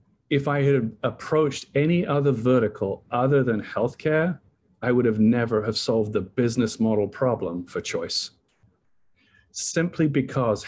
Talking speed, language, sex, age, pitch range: 135 wpm, English, male, 50-69, 105-135 Hz